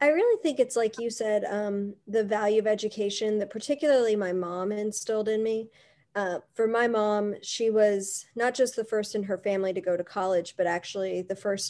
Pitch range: 185-215 Hz